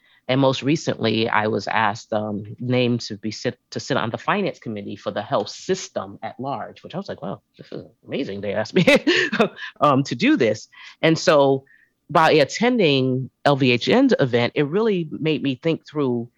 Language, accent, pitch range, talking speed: English, American, 115-140 Hz, 185 wpm